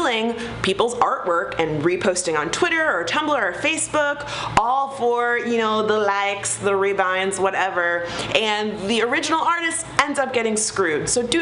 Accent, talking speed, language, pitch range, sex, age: American, 150 wpm, English, 170-235 Hz, female, 30-49